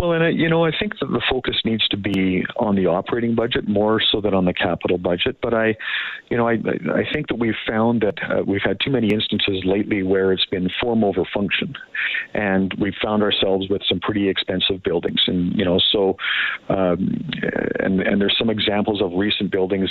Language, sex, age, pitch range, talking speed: English, male, 50-69, 95-110 Hz, 210 wpm